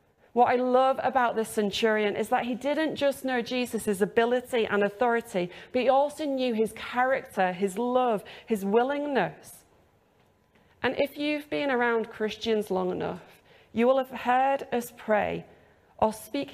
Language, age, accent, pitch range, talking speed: English, 30-49, British, 195-245 Hz, 150 wpm